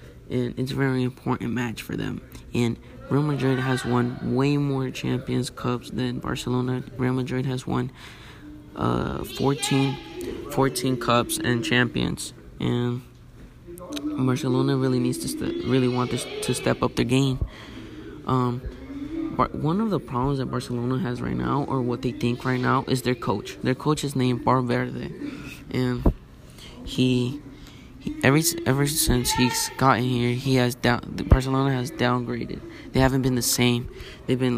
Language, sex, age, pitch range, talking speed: English, male, 20-39, 120-130 Hz, 165 wpm